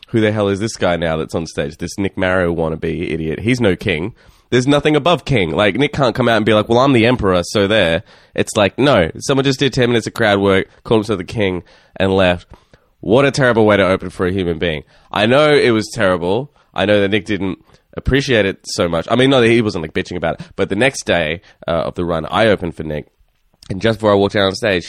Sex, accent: male, Australian